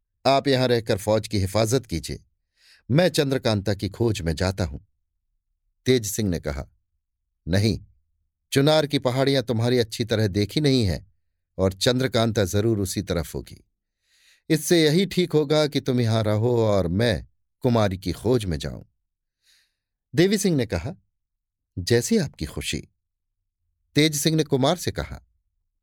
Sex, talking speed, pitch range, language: male, 145 wpm, 90-135 Hz, Hindi